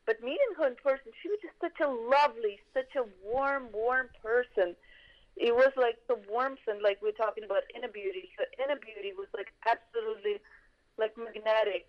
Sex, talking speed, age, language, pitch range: female, 185 wpm, 30-49, English, 195-270 Hz